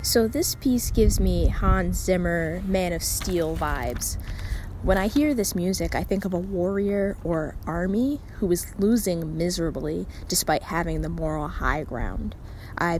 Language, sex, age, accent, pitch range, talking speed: English, female, 10-29, American, 160-190 Hz, 155 wpm